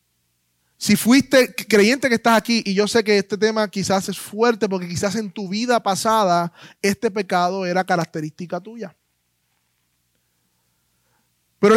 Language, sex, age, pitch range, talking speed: Spanish, male, 20-39, 160-255 Hz, 140 wpm